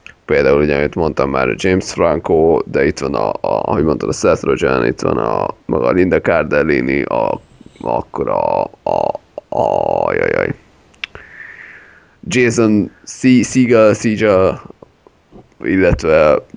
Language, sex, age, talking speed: Hungarian, male, 30-49, 115 wpm